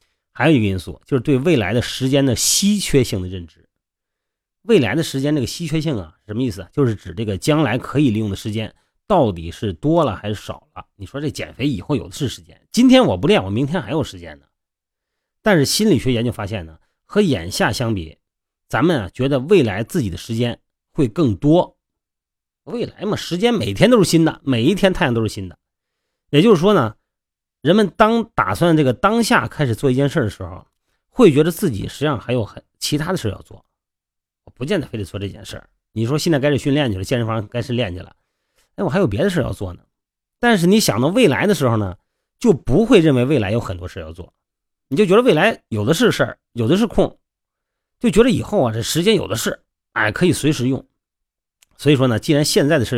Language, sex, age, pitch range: Chinese, male, 30-49, 105-160 Hz